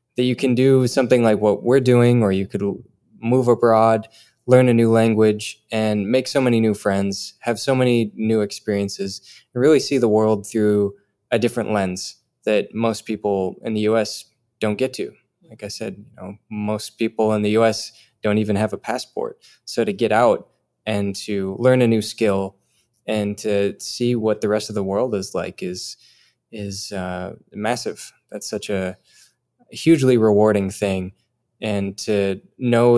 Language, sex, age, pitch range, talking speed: English, male, 20-39, 100-120 Hz, 175 wpm